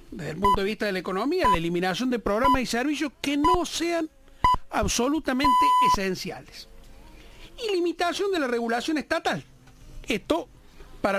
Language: Spanish